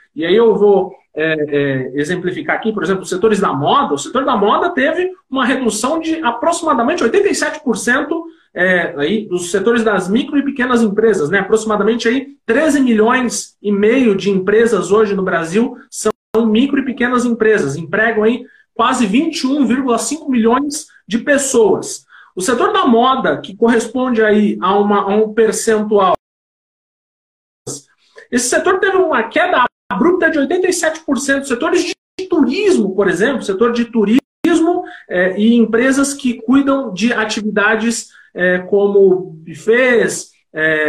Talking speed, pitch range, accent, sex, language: 145 wpm, 215-310 Hz, Brazilian, male, Portuguese